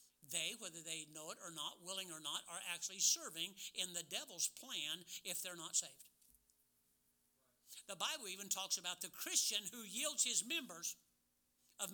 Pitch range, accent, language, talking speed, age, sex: 155-225 Hz, American, English, 165 wpm, 60-79, male